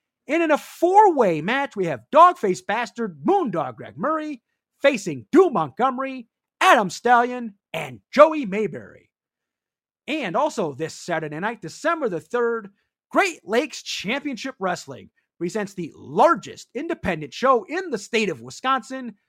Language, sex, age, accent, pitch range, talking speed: English, male, 30-49, American, 185-295 Hz, 130 wpm